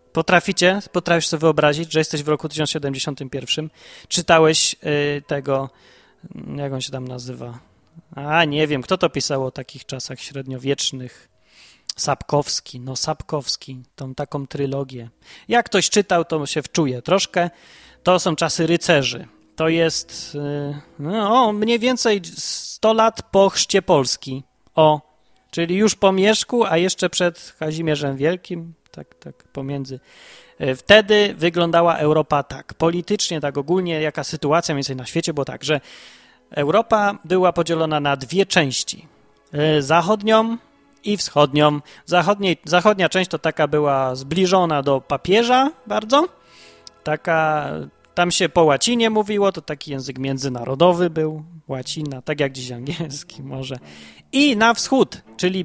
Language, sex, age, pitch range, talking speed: Polish, male, 30-49, 140-180 Hz, 135 wpm